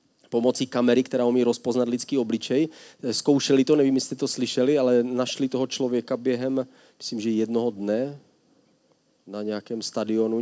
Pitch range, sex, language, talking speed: 115-130 Hz, male, Czech, 145 wpm